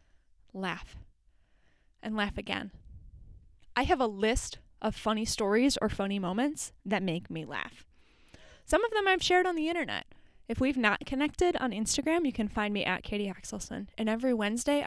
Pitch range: 200-265 Hz